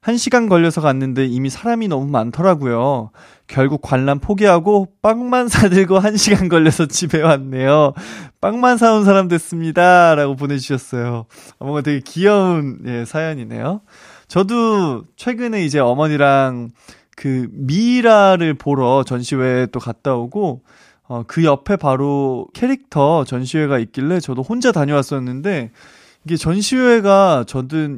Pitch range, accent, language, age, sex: 130-190 Hz, native, Korean, 20-39, male